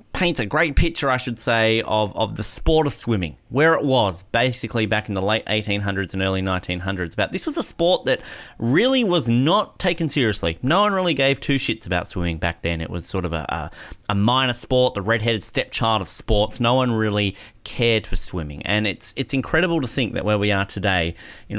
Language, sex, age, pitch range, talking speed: English, male, 30-49, 95-125 Hz, 215 wpm